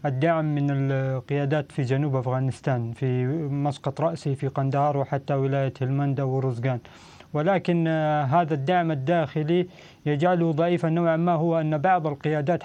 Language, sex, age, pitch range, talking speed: Arabic, male, 30-49, 150-170 Hz, 130 wpm